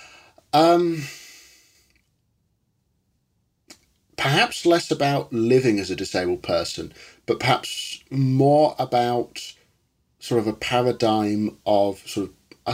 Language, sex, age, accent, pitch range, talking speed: English, male, 40-59, British, 95-115 Hz, 95 wpm